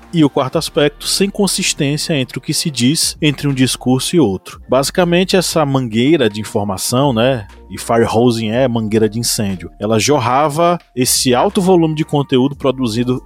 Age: 20-39